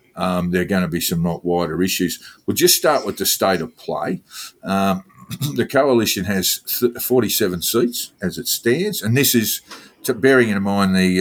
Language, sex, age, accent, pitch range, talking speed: English, male, 50-69, Australian, 90-120 Hz, 180 wpm